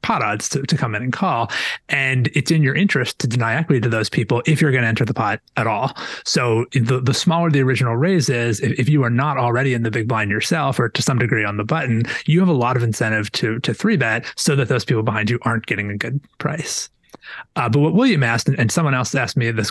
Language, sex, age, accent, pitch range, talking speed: English, male, 30-49, American, 115-150 Hz, 260 wpm